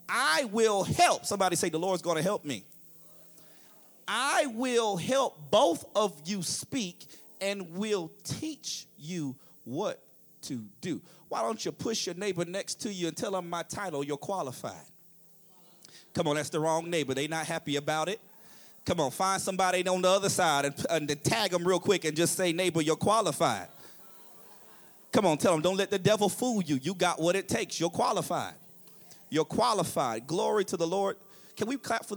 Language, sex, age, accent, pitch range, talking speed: English, male, 30-49, American, 160-205 Hz, 185 wpm